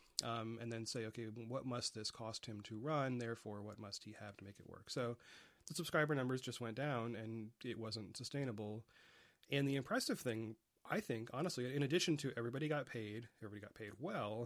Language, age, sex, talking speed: English, 30-49, male, 205 wpm